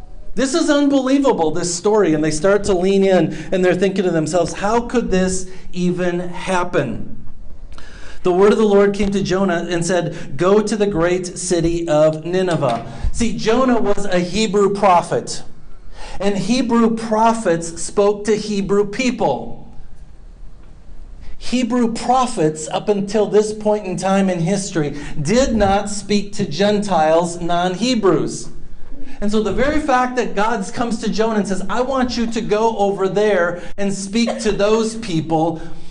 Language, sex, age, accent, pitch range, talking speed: English, male, 40-59, American, 165-210 Hz, 150 wpm